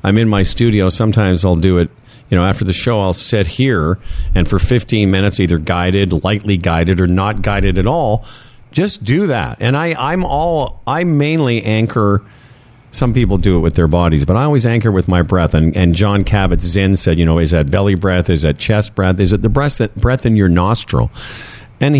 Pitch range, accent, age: 95-130 Hz, American, 50-69